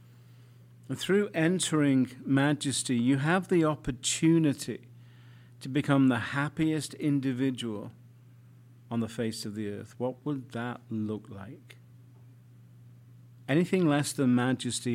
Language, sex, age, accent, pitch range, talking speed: English, male, 50-69, British, 120-130 Hz, 110 wpm